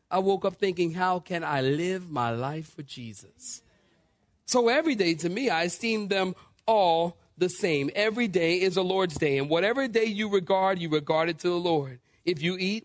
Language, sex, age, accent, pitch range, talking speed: English, male, 40-59, American, 150-195 Hz, 200 wpm